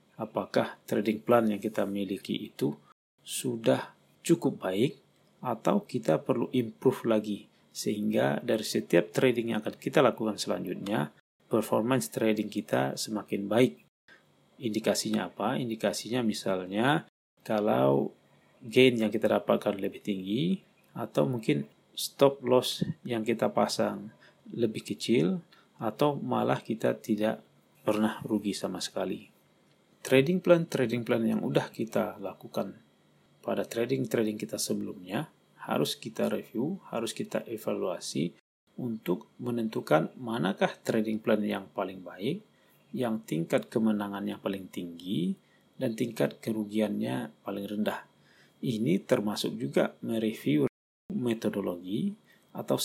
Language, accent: Indonesian, native